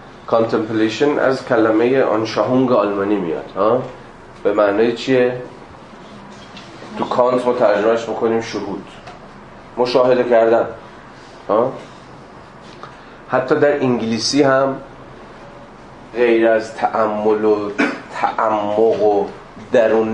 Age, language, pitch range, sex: 30-49, Persian, 105-125 Hz, male